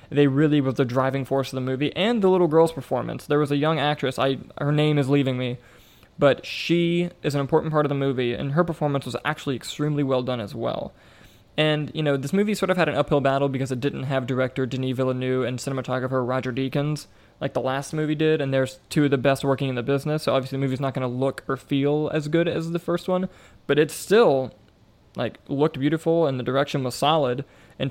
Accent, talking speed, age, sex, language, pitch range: American, 235 wpm, 20-39, male, English, 130-150 Hz